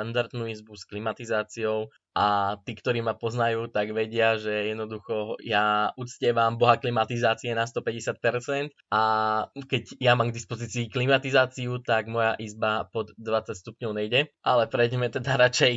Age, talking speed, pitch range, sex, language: 20-39, 140 wpm, 110-125 Hz, male, Slovak